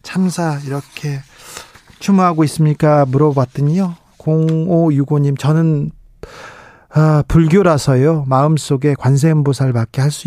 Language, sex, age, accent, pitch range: Korean, male, 40-59, native, 130-155 Hz